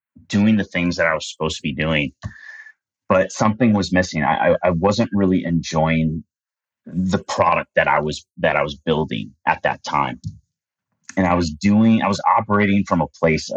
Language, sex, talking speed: English, male, 180 wpm